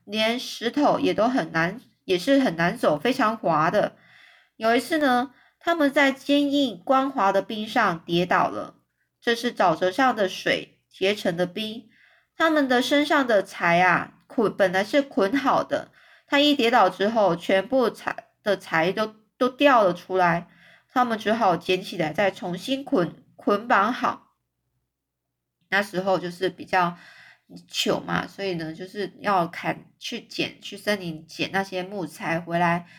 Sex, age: female, 20-39